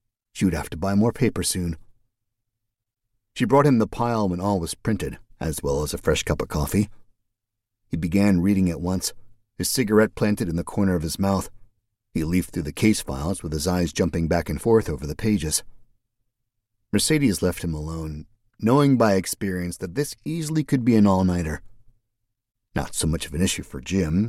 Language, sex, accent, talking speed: English, male, American, 190 wpm